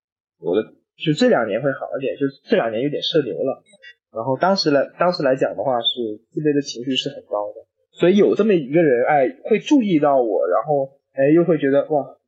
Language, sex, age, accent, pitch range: Chinese, male, 20-39, native, 130-175 Hz